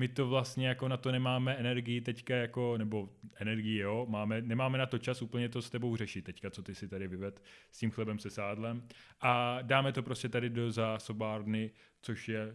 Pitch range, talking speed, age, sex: 110-130 Hz, 205 wpm, 20-39, male